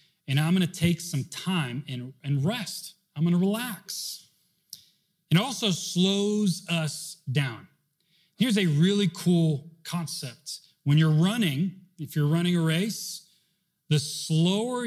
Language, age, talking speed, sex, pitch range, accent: English, 30-49, 135 wpm, male, 155-190 Hz, American